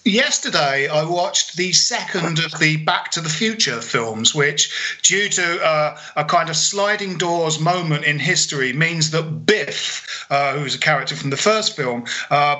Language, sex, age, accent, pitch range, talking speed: English, male, 40-59, British, 150-190 Hz, 175 wpm